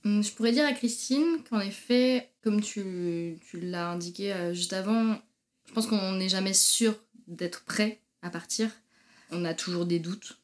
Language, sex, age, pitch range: French, female, 20-39, 175-215 Hz